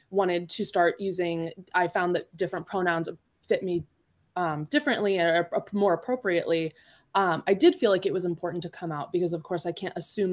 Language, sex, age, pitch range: English, female, 20-39, 165-195 Hz